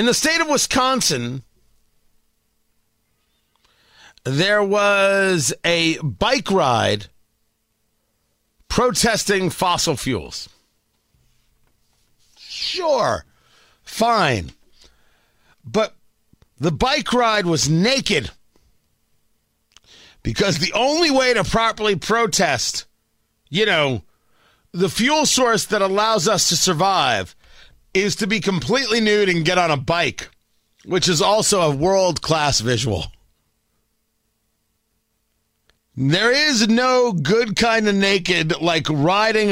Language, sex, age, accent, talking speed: English, male, 50-69, American, 95 wpm